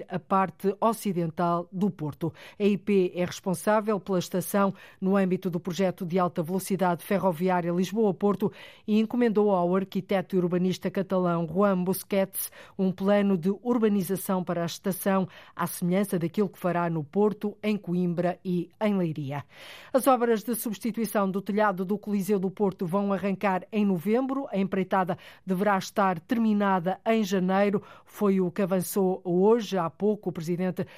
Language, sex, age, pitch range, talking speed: Portuguese, female, 50-69, 180-200 Hz, 145 wpm